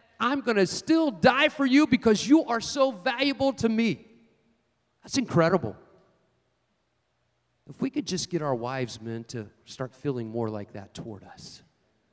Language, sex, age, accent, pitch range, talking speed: English, male, 40-59, American, 130-220 Hz, 160 wpm